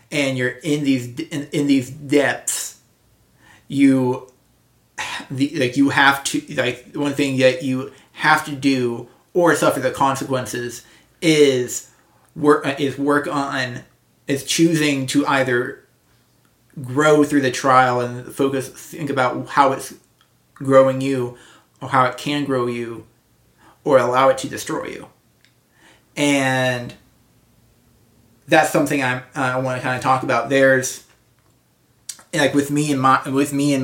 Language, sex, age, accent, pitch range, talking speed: English, male, 30-49, American, 125-145 Hz, 140 wpm